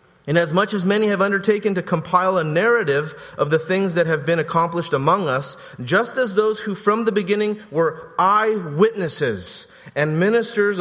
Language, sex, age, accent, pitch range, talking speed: English, male, 30-49, American, 170-225 Hz, 170 wpm